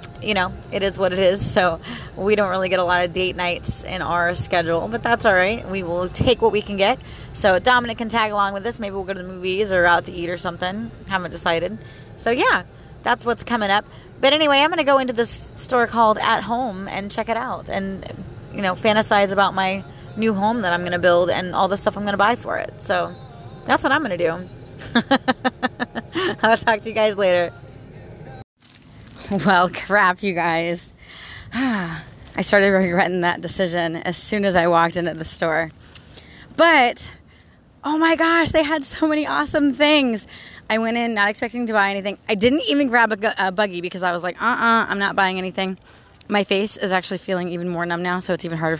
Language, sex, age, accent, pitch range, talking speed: English, female, 30-49, American, 175-225 Hz, 215 wpm